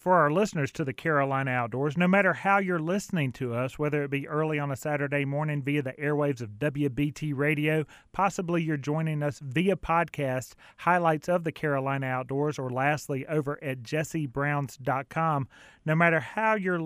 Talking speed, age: 170 wpm, 30-49